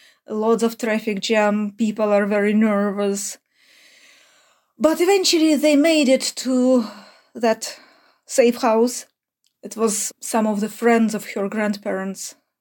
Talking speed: 125 wpm